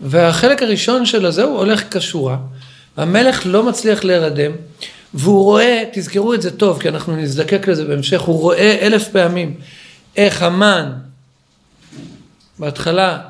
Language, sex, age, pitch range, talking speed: Hebrew, male, 50-69, 150-205 Hz, 130 wpm